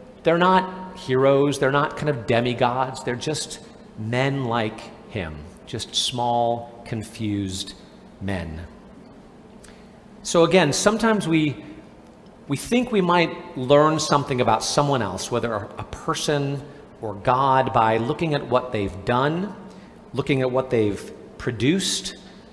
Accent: American